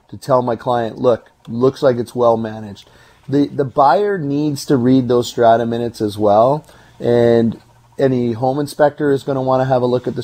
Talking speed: 195 wpm